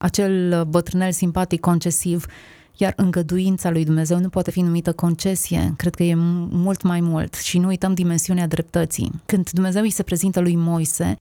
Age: 20-39